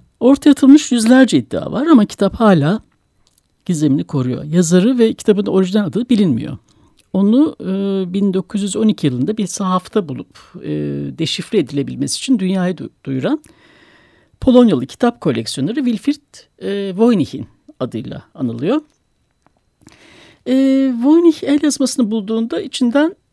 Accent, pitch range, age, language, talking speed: native, 185-260 Hz, 60-79, Turkish, 115 wpm